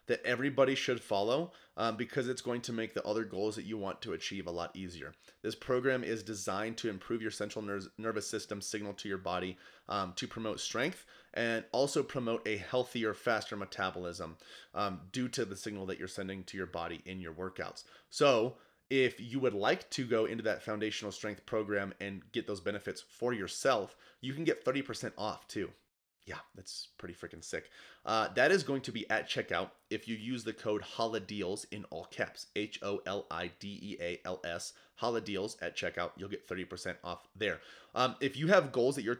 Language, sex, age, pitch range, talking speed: English, male, 30-49, 100-120 Hz, 185 wpm